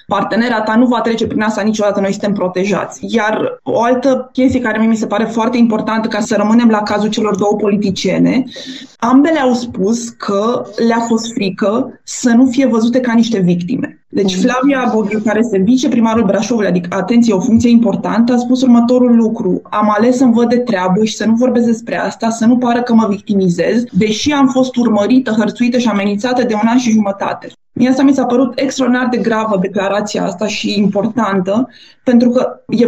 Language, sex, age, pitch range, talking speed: Romanian, female, 20-39, 210-255 Hz, 190 wpm